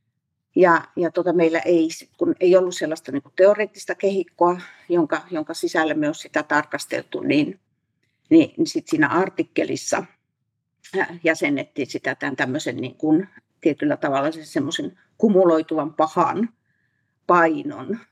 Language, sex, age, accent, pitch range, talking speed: Finnish, female, 50-69, native, 160-230 Hz, 115 wpm